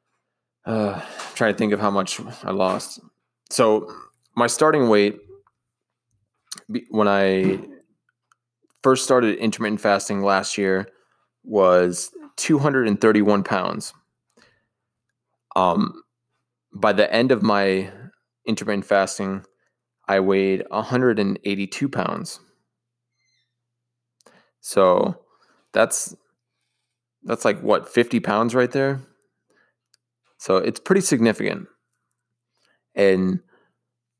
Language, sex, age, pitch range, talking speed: English, male, 20-39, 100-120 Hz, 90 wpm